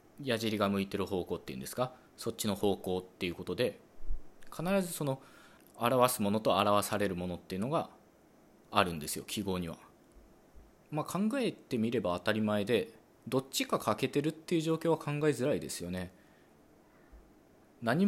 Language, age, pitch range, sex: Japanese, 20-39, 95-130 Hz, male